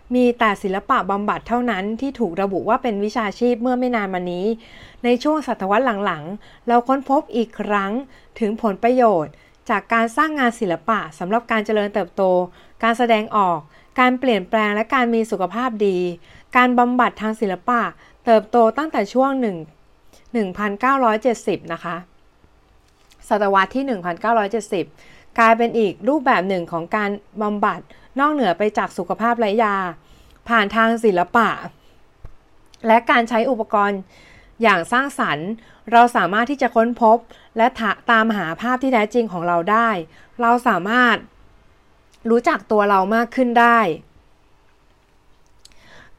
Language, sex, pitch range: Thai, female, 195-240 Hz